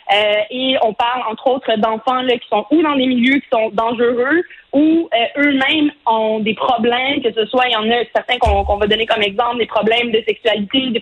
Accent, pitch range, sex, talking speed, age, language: Canadian, 225-285 Hz, female, 230 wpm, 20-39, French